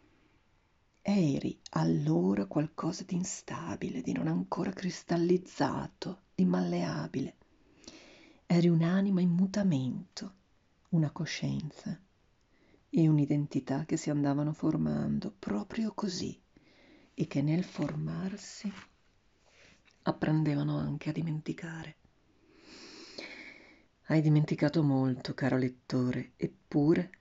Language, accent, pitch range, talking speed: Italian, native, 140-185 Hz, 85 wpm